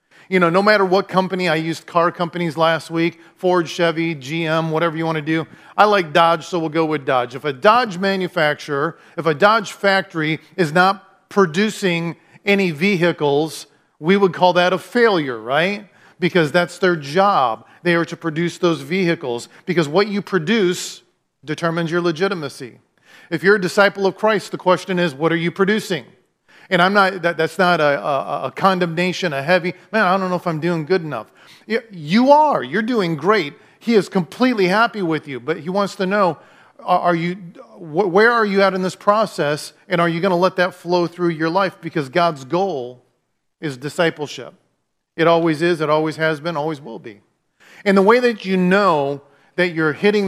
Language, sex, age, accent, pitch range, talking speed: English, male, 40-59, American, 165-195 Hz, 190 wpm